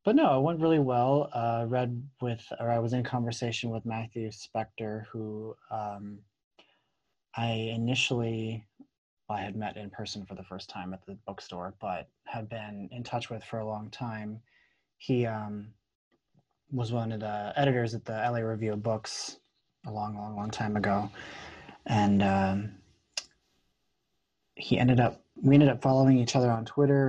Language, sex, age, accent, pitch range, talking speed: English, male, 20-39, American, 100-120 Hz, 170 wpm